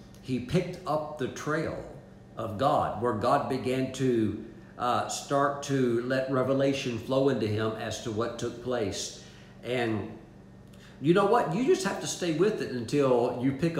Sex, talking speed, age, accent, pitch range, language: male, 165 wpm, 50-69, American, 110-140 Hz, English